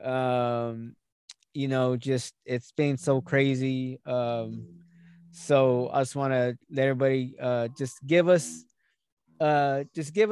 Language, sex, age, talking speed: English, male, 20-39, 135 wpm